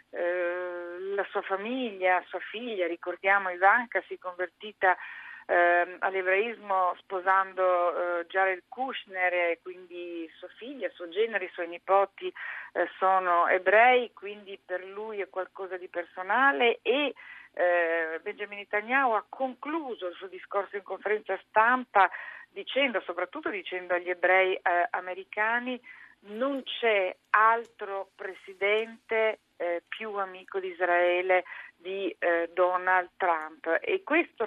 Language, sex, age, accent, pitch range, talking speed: Italian, female, 40-59, native, 180-210 Hz, 110 wpm